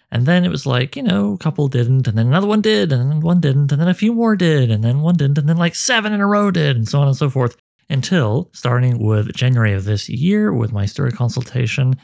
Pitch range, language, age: 115-150 Hz, English, 30-49